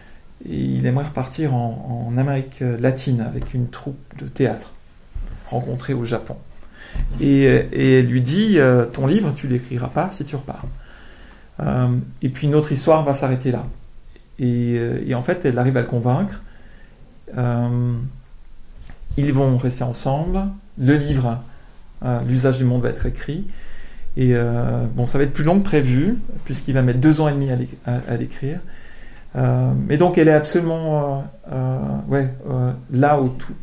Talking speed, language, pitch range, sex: 180 wpm, French, 120-155 Hz, male